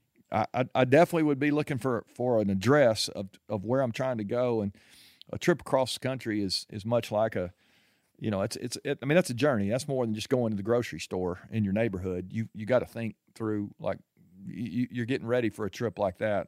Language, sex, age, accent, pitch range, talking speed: English, male, 40-59, American, 110-140 Hz, 240 wpm